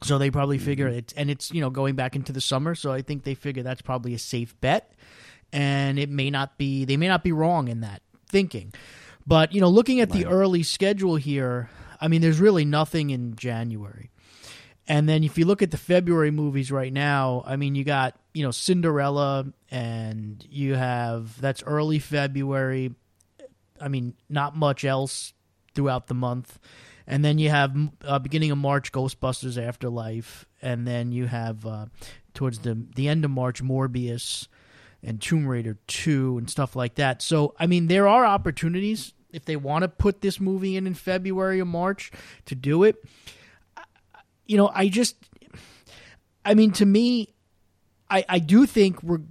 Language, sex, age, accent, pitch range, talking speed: English, male, 30-49, American, 125-165 Hz, 185 wpm